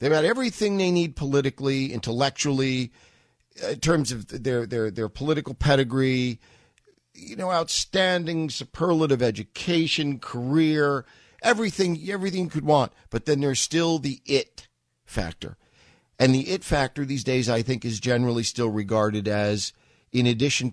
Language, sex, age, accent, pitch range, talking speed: English, male, 50-69, American, 100-140 Hz, 140 wpm